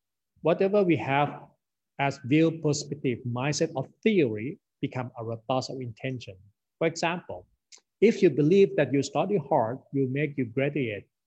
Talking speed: 145 wpm